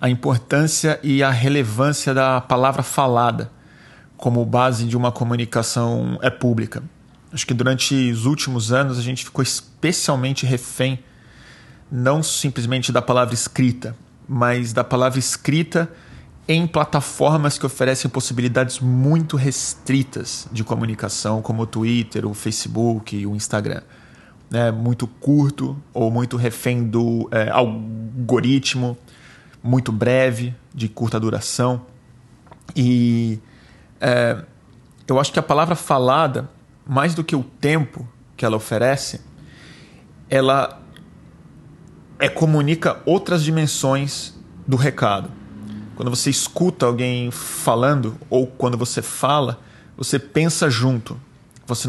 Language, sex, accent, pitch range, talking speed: Portuguese, male, Brazilian, 120-140 Hz, 115 wpm